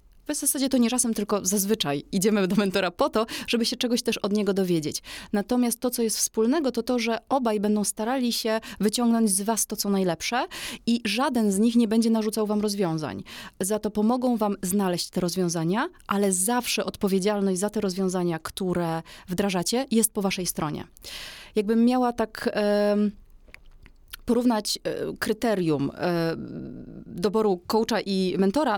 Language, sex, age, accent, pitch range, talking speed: Polish, female, 20-39, native, 190-225 Hz, 155 wpm